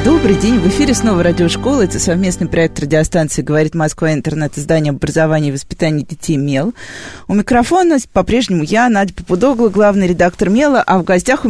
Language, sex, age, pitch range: Russian, female, 20-39, 170-210 Hz